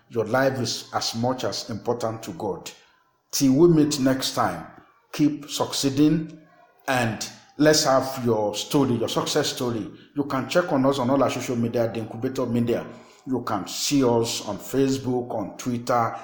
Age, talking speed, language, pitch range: 50-69, 165 wpm, English, 120-145 Hz